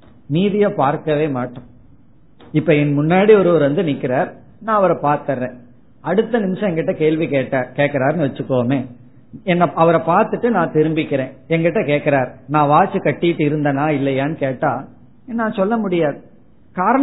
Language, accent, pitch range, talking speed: Tamil, native, 135-190 Hz, 70 wpm